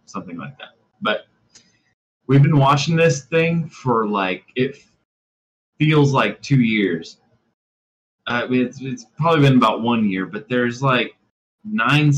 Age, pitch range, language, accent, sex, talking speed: 20-39, 100-135 Hz, English, American, male, 140 wpm